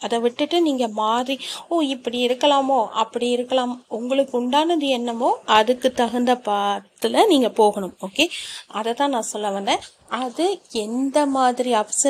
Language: Tamil